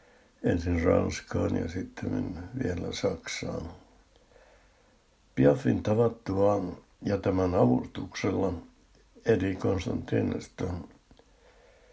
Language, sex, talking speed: Finnish, male, 70 wpm